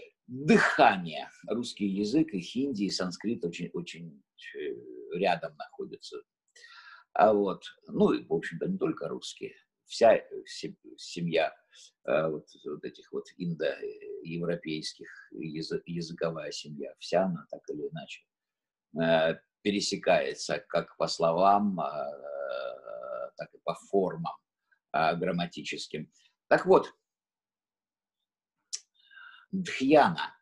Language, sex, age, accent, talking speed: Russian, male, 50-69, native, 90 wpm